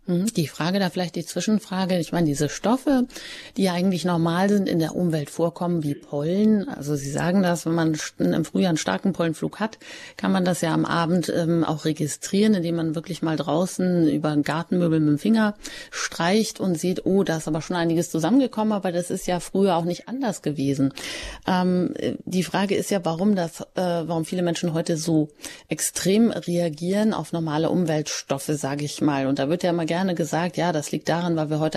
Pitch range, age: 155-190 Hz, 30-49